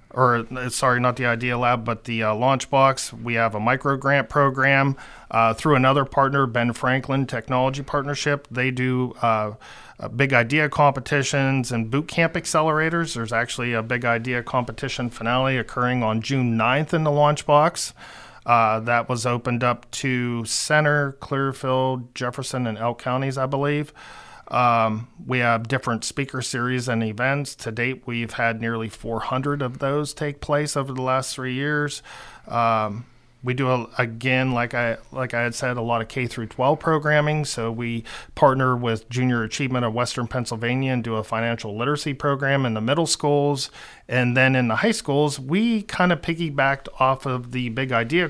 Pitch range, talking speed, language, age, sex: 120-140 Hz, 165 wpm, English, 40-59, male